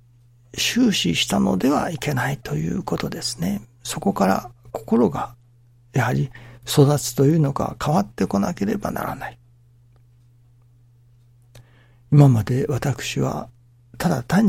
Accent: native